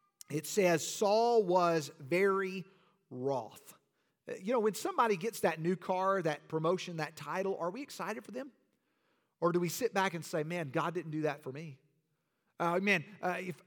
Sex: male